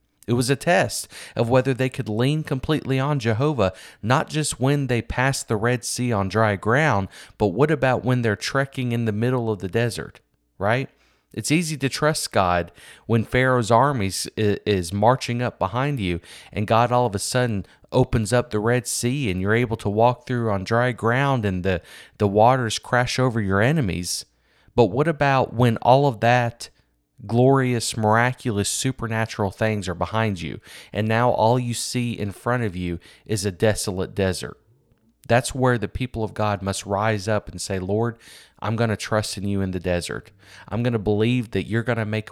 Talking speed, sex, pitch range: 190 wpm, male, 105-130 Hz